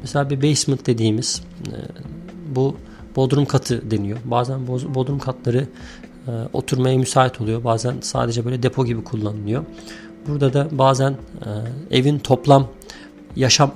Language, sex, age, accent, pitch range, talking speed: Turkish, male, 40-59, native, 115-135 Hz, 115 wpm